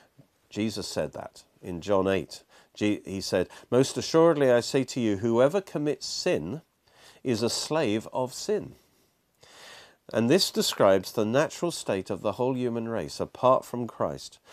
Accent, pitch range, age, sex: British, 95-135 Hz, 50-69, male